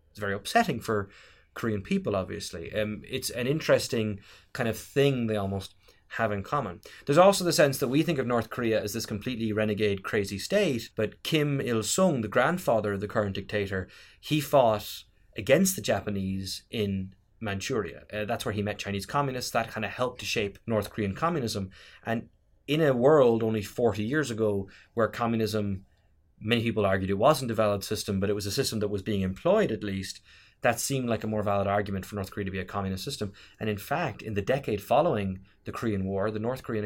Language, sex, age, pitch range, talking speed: English, male, 20-39, 100-115 Hz, 200 wpm